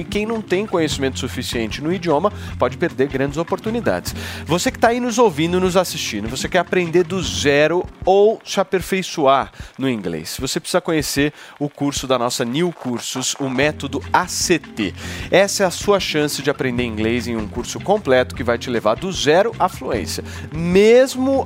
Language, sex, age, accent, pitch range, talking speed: Portuguese, male, 30-49, Brazilian, 130-180 Hz, 175 wpm